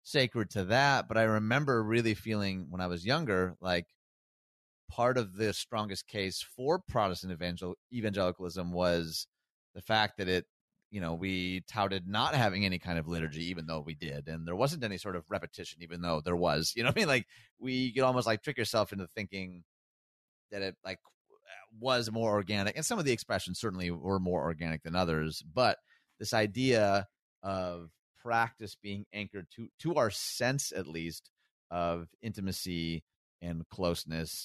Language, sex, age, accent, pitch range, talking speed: English, male, 30-49, American, 85-110 Hz, 170 wpm